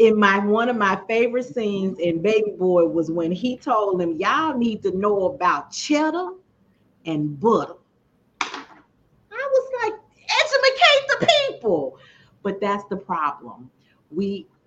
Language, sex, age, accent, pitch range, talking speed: English, female, 40-59, American, 160-230 Hz, 140 wpm